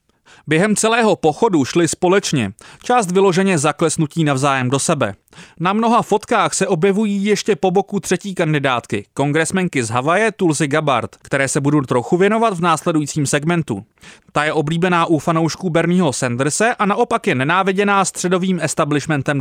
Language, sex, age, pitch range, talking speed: English, male, 30-49, 150-210 Hz, 145 wpm